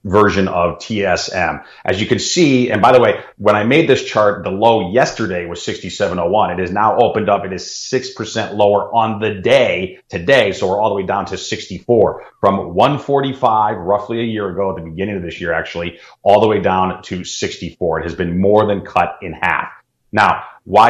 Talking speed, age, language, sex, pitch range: 205 wpm, 30-49, English, male, 85-105 Hz